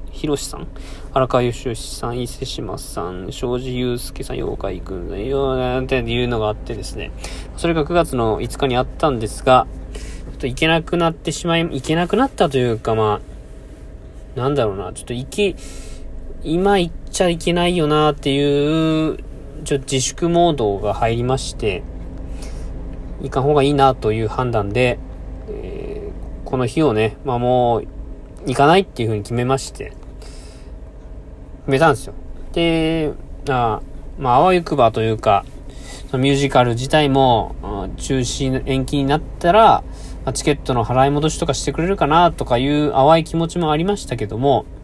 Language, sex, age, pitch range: Japanese, male, 20-39, 115-150 Hz